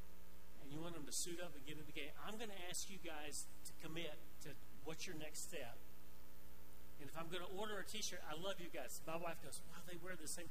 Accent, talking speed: American, 255 wpm